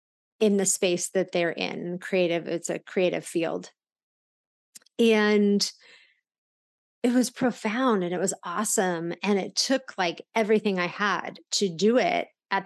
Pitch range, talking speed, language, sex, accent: 185-220 Hz, 135 wpm, English, female, American